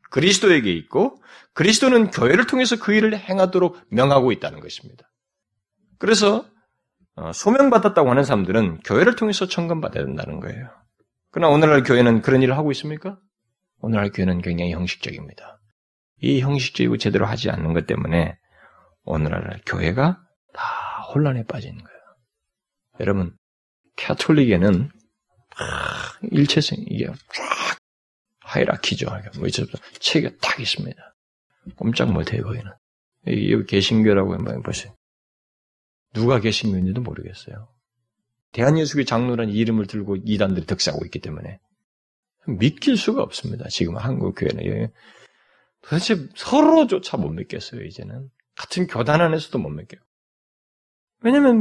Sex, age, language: male, 30-49, Korean